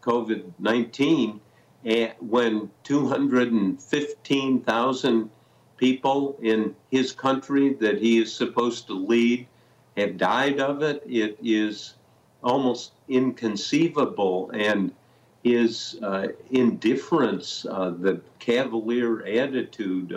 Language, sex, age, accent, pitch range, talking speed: English, male, 50-69, American, 110-130 Hz, 85 wpm